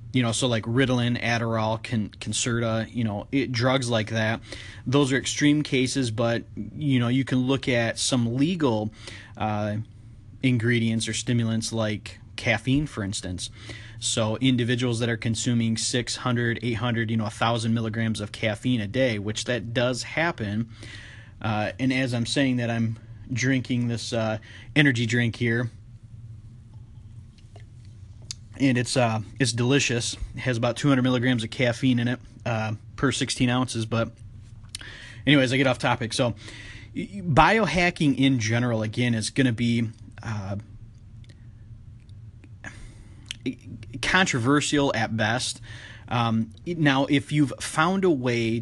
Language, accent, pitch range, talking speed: English, American, 110-125 Hz, 135 wpm